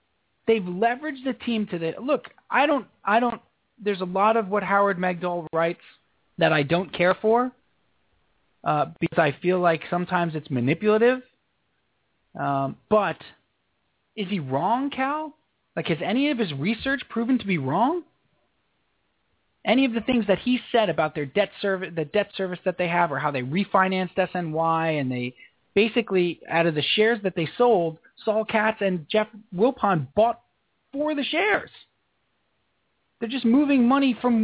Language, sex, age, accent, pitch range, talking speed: English, male, 30-49, American, 180-250 Hz, 165 wpm